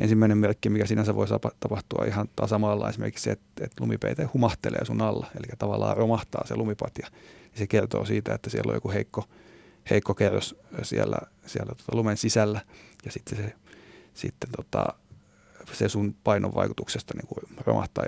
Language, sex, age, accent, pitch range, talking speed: Finnish, male, 30-49, native, 105-115 Hz, 160 wpm